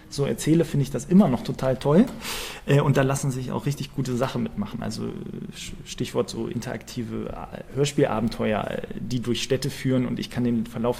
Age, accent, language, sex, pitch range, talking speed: 20-39, German, German, male, 120-140 Hz, 180 wpm